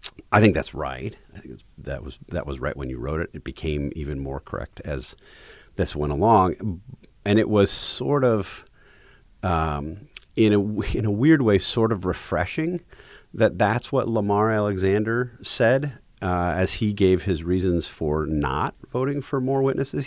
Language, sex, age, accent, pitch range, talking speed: English, male, 40-59, American, 80-125 Hz, 175 wpm